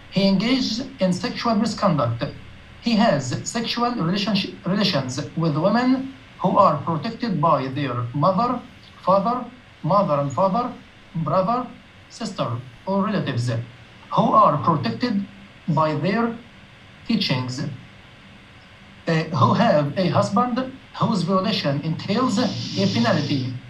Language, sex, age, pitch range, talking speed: English, male, 60-79, 140-230 Hz, 105 wpm